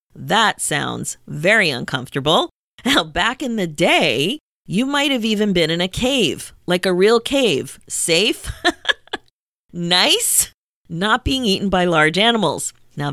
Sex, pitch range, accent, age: female, 160-235 Hz, American, 40-59